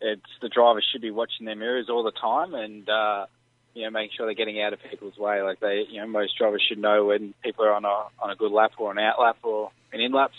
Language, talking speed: English, 275 wpm